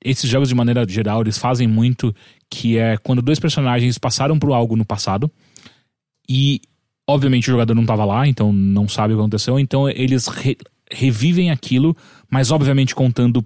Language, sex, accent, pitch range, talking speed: English, male, Brazilian, 115-165 Hz, 175 wpm